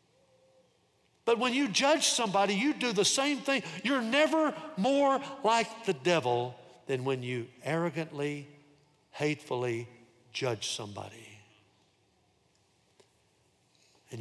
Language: English